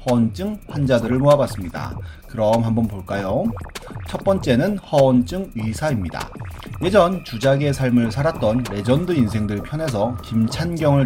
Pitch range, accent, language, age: 105-140 Hz, native, Korean, 30-49